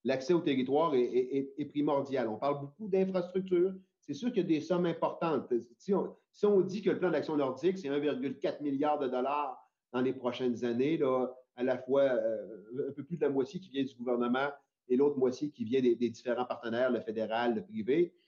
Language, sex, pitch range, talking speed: French, male, 130-185 Hz, 215 wpm